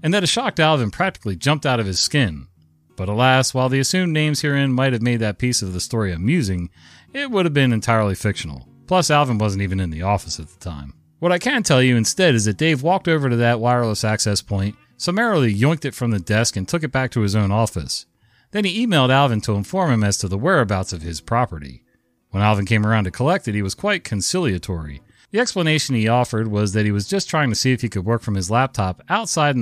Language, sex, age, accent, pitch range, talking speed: English, male, 40-59, American, 100-130 Hz, 240 wpm